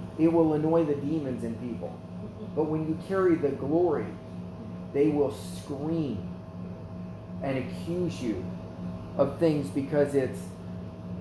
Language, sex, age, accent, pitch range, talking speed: English, male, 40-59, American, 90-155 Hz, 125 wpm